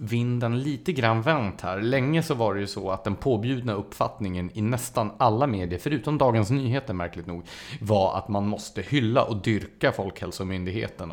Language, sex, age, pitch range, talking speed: English, male, 30-49, 95-125 Hz, 175 wpm